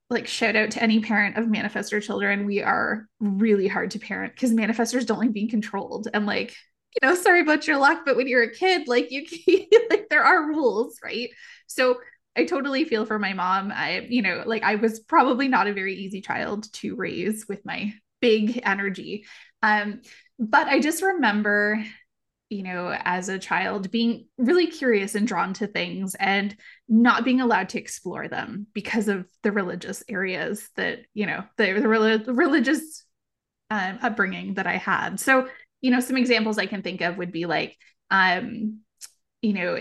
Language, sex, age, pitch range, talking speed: English, female, 20-39, 205-255 Hz, 185 wpm